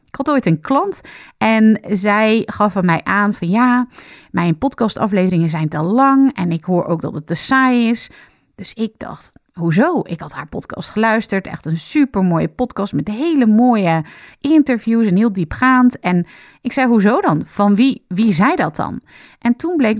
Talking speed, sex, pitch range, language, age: 185 wpm, female, 185-265 Hz, Dutch, 30-49